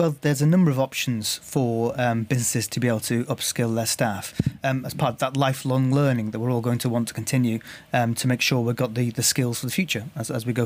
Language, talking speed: English, 265 wpm